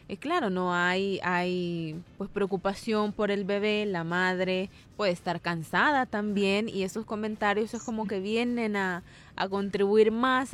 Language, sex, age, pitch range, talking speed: Spanish, female, 20-39, 185-235 Hz, 155 wpm